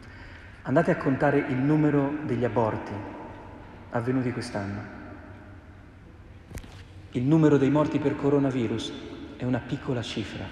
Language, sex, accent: Italian, male, native